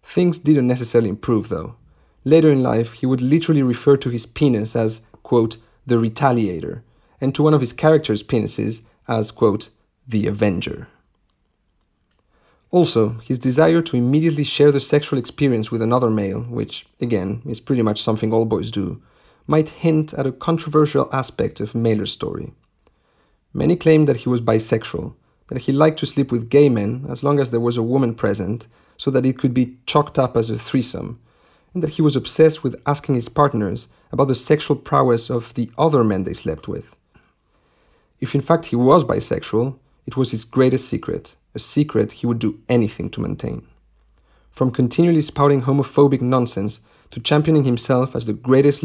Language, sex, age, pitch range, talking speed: English, male, 30-49, 115-145 Hz, 175 wpm